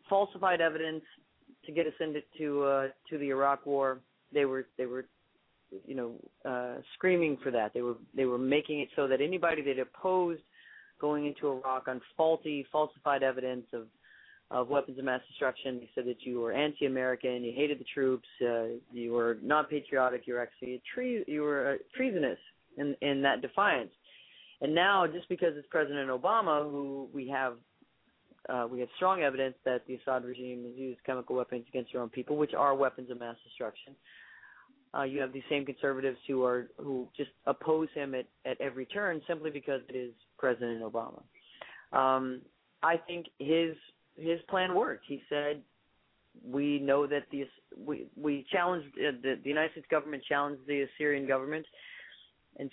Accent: American